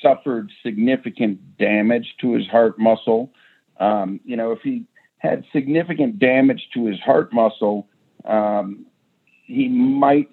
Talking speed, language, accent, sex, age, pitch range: 130 wpm, English, American, male, 50-69, 105-135 Hz